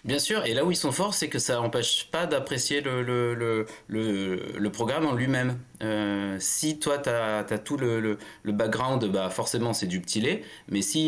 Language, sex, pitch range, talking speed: French, male, 100-125 Hz, 215 wpm